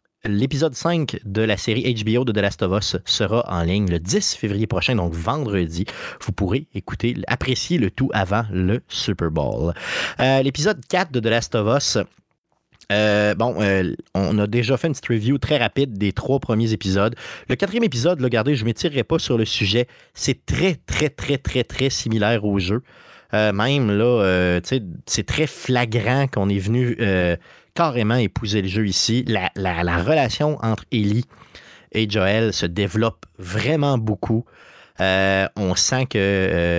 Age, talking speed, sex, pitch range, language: 30-49, 175 wpm, male, 95-120 Hz, French